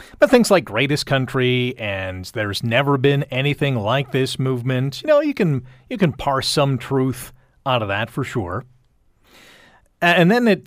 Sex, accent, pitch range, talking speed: male, American, 125-180 Hz, 170 wpm